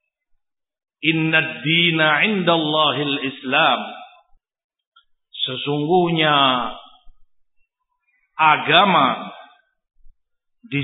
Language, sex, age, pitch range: Indonesian, male, 50-69, 150-245 Hz